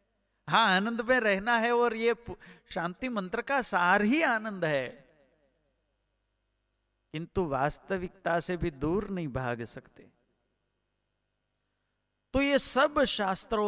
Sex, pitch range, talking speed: male, 125-195 Hz, 115 wpm